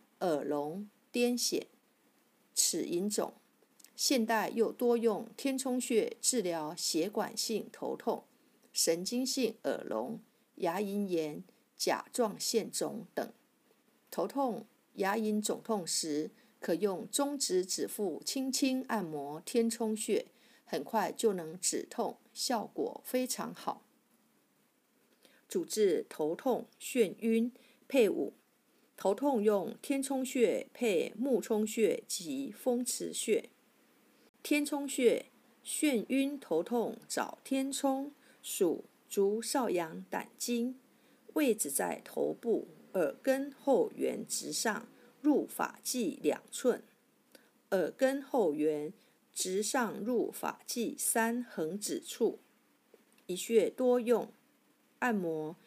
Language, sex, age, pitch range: Chinese, female, 50-69, 210-265 Hz